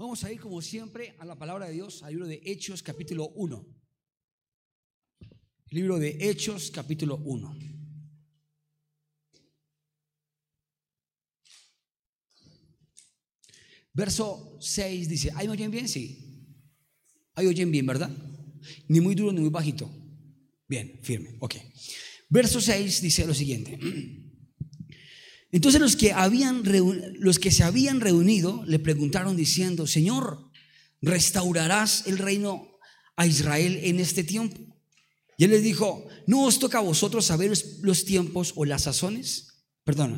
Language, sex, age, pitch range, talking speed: Spanish, male, 40-59, 145-190 Hz, 120 wpm